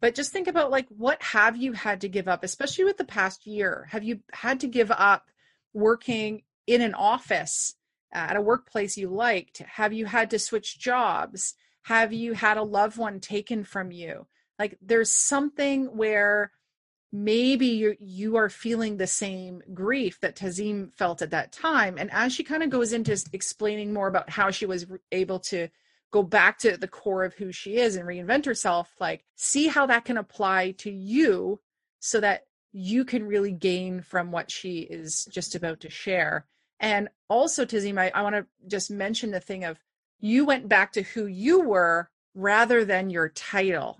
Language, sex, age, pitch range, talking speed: English, female, 30-49, 190-235 Hz, 185 wpm